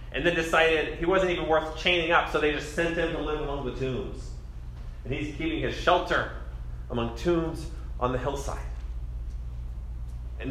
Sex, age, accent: male, 30-49, American